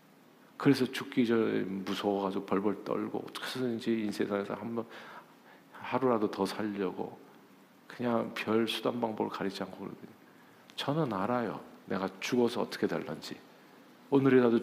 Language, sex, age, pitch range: Korean, male, 50-69, 105-165 Hz